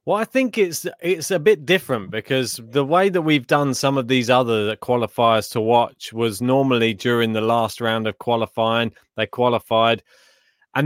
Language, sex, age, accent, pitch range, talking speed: English, male, 30-49, British, 120-165 Hz, 175 wpm